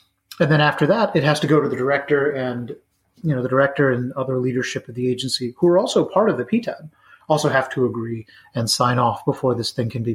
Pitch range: 130-155 Hz